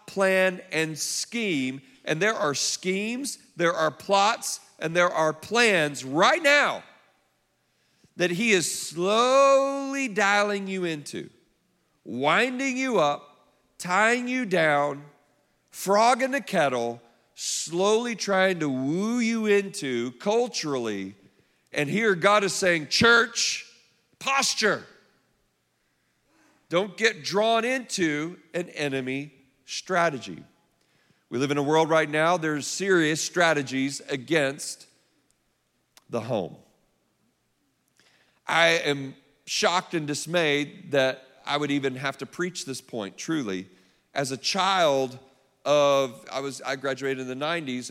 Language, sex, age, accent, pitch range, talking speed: English, male, 50-69, American, 140-195 Hz, 115 wpm